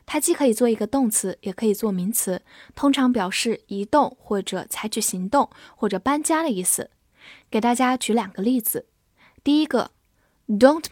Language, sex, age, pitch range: Chinese, female, 10-29, 205-255 Hz